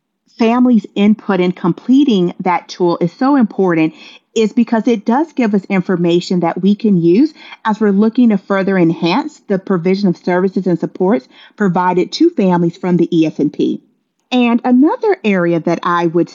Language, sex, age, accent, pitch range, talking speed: English, female, 40-59, American, 180-235 Hz, 160 wpm